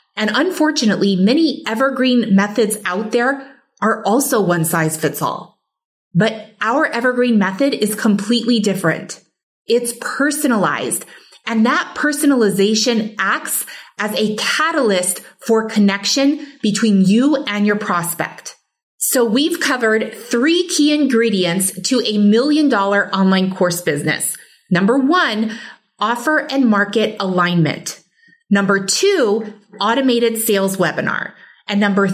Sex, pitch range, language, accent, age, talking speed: female, 200-260 Hz, English, American, 30-49, 110 wpm